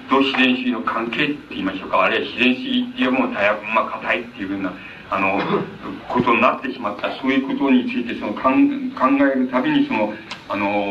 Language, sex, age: Japanese, male, 40-59